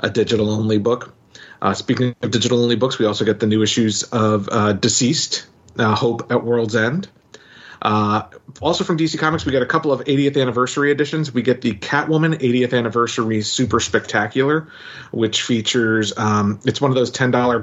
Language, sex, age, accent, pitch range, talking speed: English, male, 40-59, American, 105-125 Hz, 175 wpm